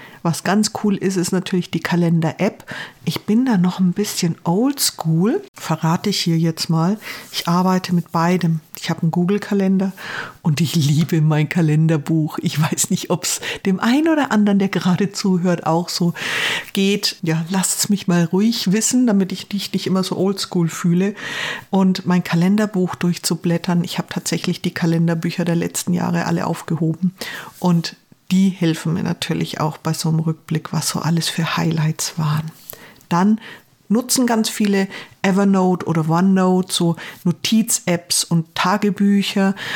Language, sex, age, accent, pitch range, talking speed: German, female, 50-69, German, 170-200 Hz, 155 wpm